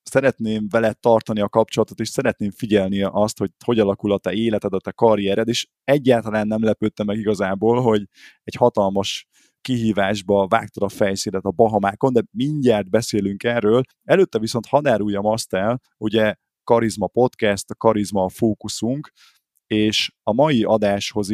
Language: Hungarian